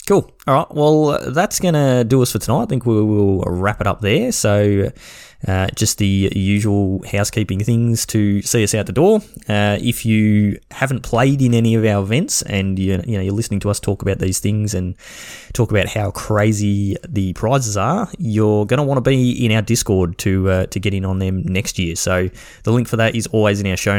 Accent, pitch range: Australian, 95-115 Hz